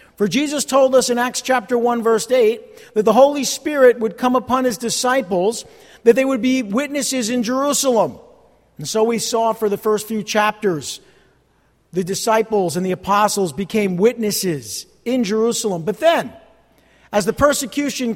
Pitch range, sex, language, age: 205-250 Hz, male, English, 50-69